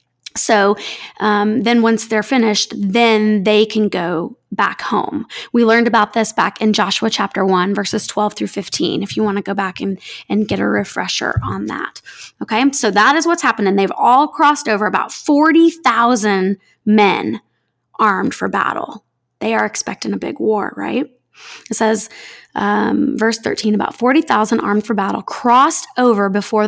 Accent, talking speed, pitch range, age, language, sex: American, 170 wpm, 205-245 Hz, 20-39, English, female